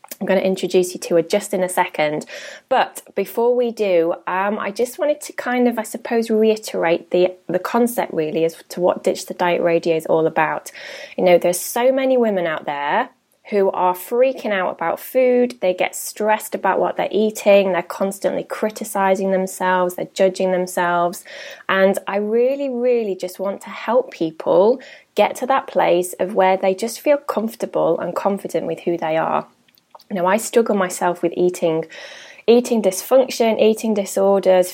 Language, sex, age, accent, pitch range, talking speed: English, female, 20-39, British, 180-235 Hz, 180 wpm